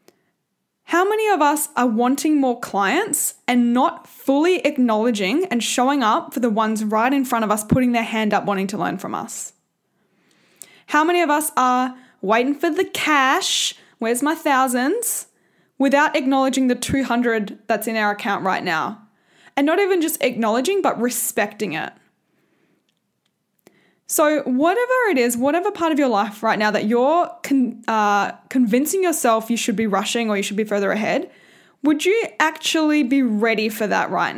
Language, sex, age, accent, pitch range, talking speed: English, female, 10-29, Australian, 215-300 Hz, 170 wpm